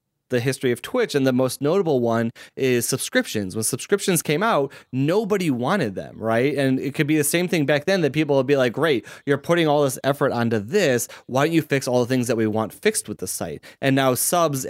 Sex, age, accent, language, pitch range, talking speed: male, 30-49, American, English, 120-145 Hz, 235 wpm